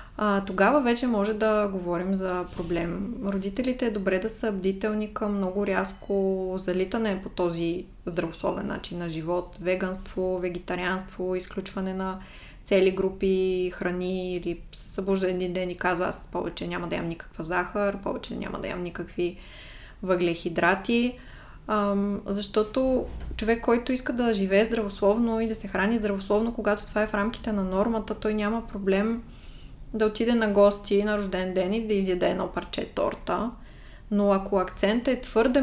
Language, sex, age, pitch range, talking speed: Bulgarian, female, 20-39, 185-215 Hz, 150 wpm